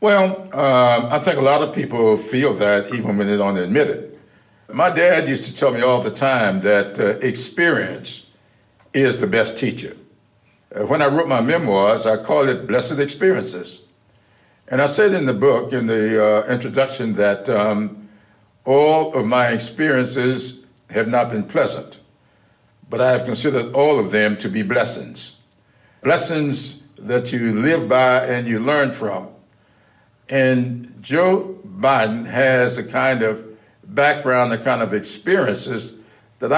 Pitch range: 110-135 Hz